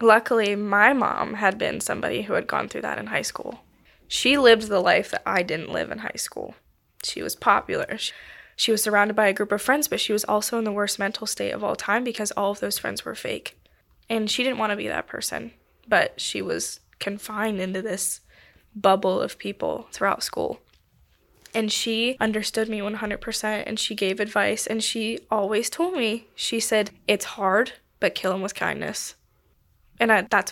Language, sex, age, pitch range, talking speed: English, female, 10-29, 200-230 Hz, 195 wpm